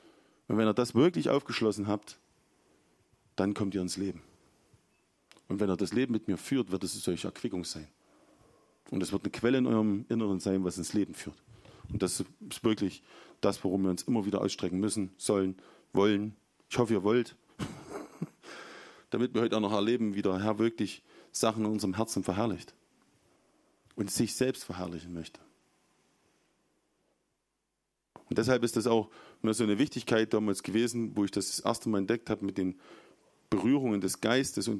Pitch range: 95-115 Hz